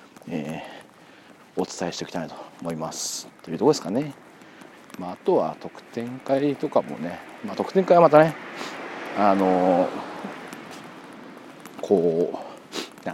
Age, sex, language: 40-59, male, Japanese